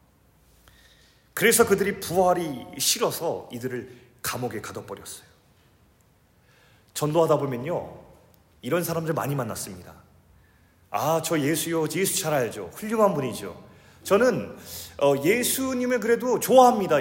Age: 30-49